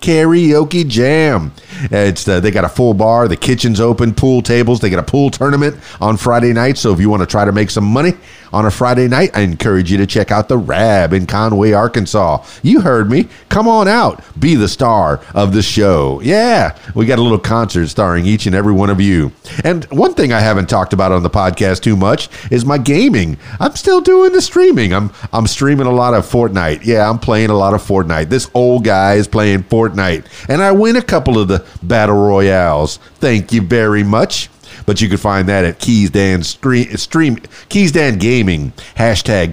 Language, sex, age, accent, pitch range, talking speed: English, male, 40-59, American, 95-120 Hz, 215 wpm